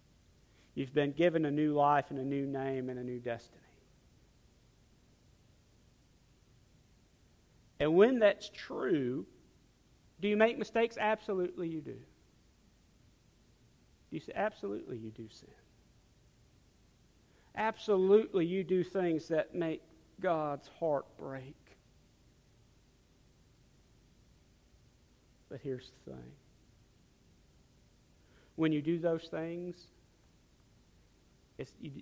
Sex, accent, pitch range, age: male, American, 135-215 Hz, 40-59